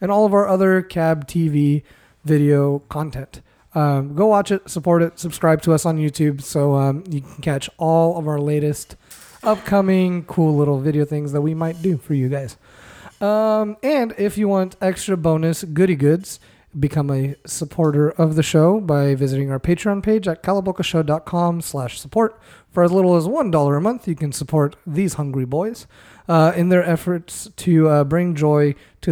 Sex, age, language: male, 30-49, English